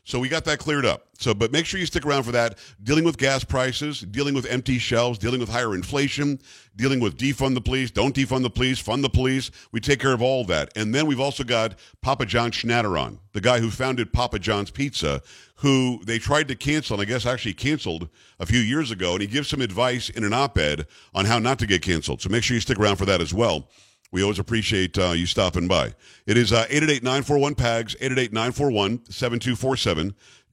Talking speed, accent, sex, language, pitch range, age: 215 wpm, American, male, English, 110-140 Hz, 50-69